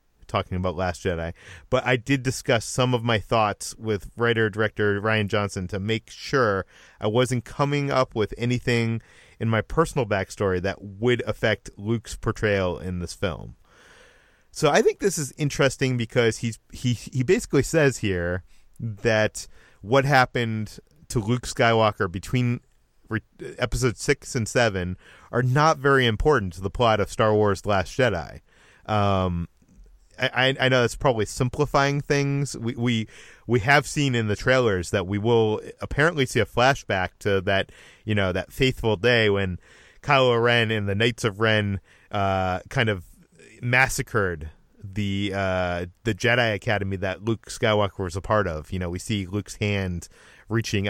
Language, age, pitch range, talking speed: English, 30-49, 95-125 Hz, 160 wpm